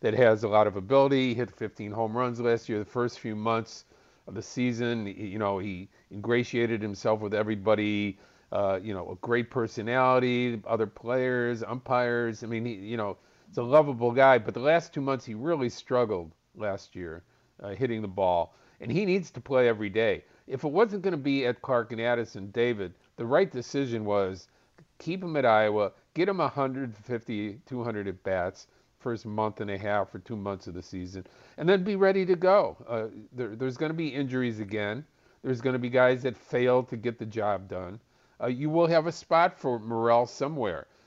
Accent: American